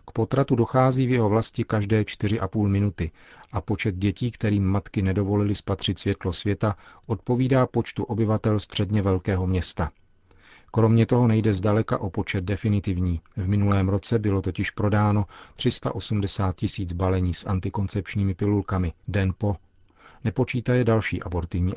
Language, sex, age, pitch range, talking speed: Czech, male, 40-59, 95-110 Hz, 130 wpm